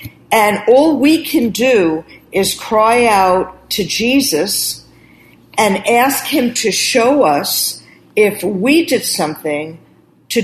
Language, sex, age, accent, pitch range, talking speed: English, female, 50-69, American, 165-225 Hz, 120 wpm